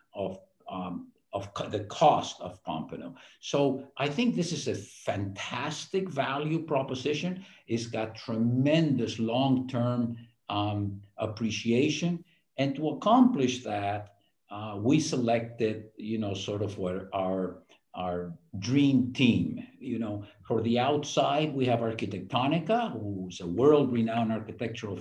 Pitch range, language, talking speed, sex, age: 100-125 Hz, English, 120 wpm, male, 50-69